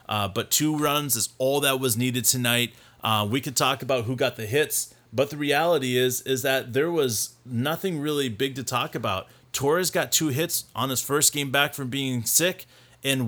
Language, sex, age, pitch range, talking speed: English, male, 30-49, 120-140 Hz, 210 wpm